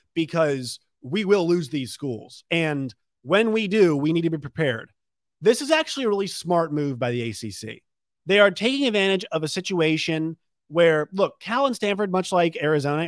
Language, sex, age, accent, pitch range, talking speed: English, male, 30-49, American, 125-170 Hz, 185 wpm